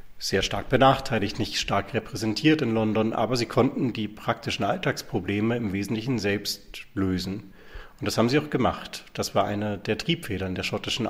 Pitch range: 95-125 Hz